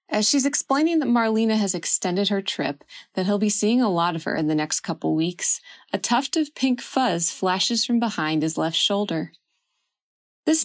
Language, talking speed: English, 190 wpm